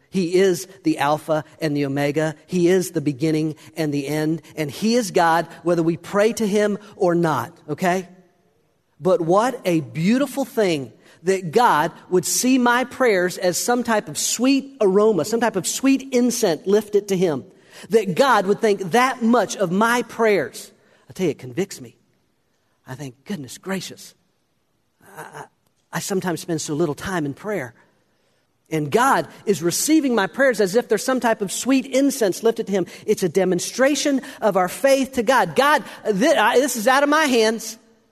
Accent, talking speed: American, 175 wpm